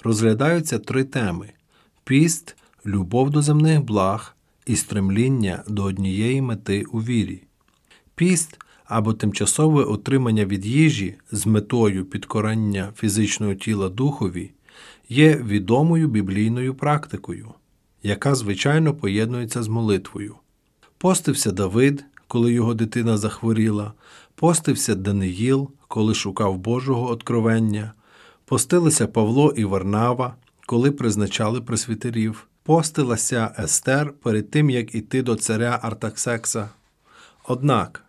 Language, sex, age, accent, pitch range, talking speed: Ukrainian, male, 40-59, native, 105-140 Hz, 105 wpm